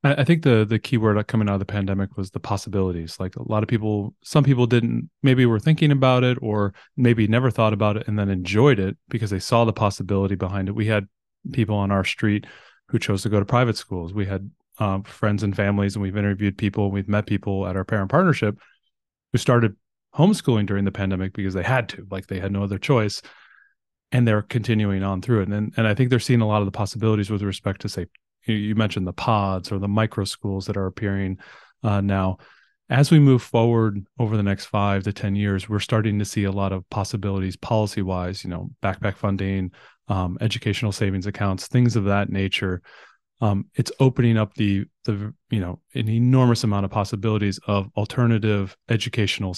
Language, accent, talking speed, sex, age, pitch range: English, American, 210 wpm, male, 30-49, 95-115 Hz